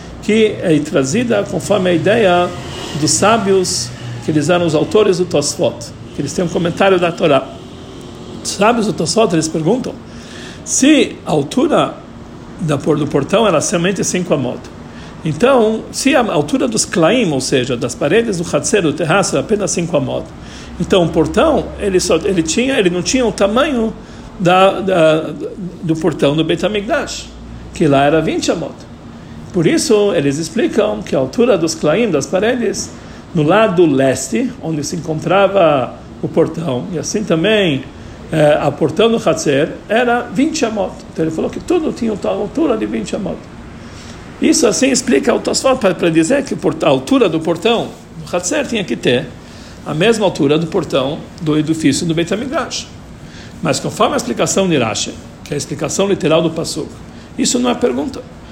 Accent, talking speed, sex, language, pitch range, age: Brazilian, 170 wpm, male, Portuguese, 160-215 Hz, 60-79